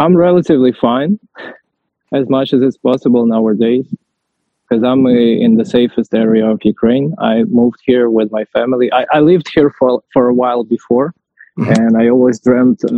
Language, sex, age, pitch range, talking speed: German, male, 20-39, 115-135 Hz, 170 wpm